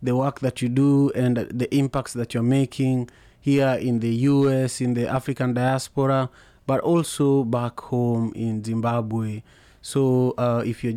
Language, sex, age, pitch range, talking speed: English, male, 30-49, 115-130 Hz, 160 wpm